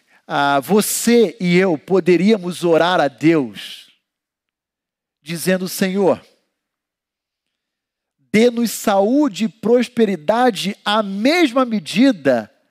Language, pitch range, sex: Portuguese, 170-225 Hz, male